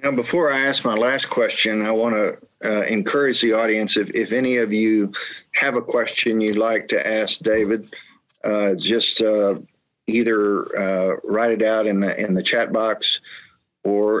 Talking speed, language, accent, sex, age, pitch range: 175 wpm, English, American, male, 50-69, 100-115 Hz